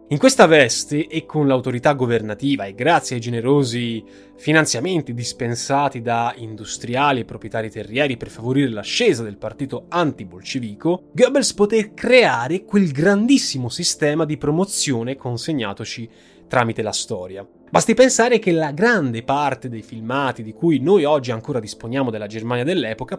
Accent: native